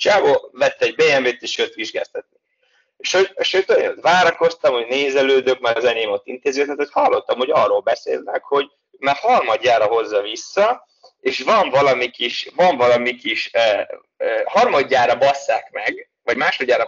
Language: Hungarian